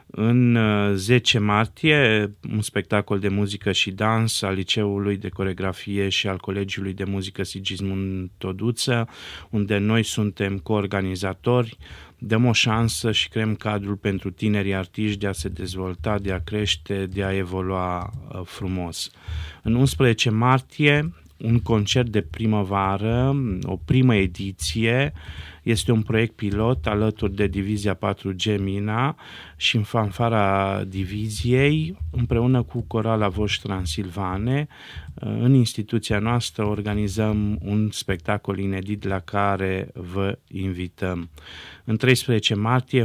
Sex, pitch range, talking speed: male, 95-115 Hz, 120 wpm